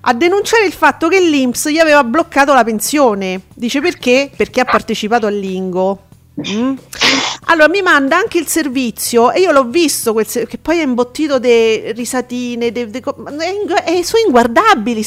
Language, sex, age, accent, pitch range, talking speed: Italian, female, 40-59, native, 225-300 Hz, 180 wpm